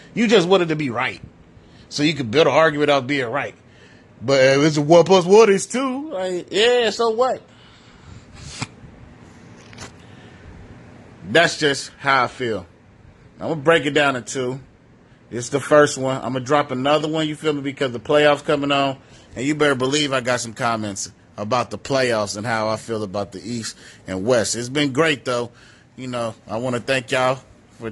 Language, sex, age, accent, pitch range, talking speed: English, male, 30-49, American, 120-150 Hz, 200 wpm